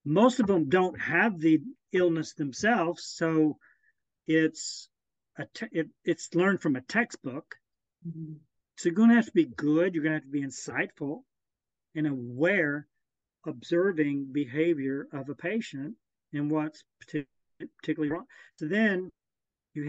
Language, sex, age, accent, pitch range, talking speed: English, male, 50-69, American, 145-180 Hz, 145 wpm